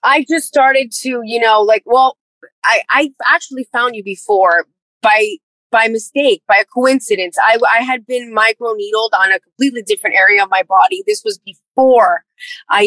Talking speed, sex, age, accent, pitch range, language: 175 wpm, female, 20-39, American, 195-250 Hz, English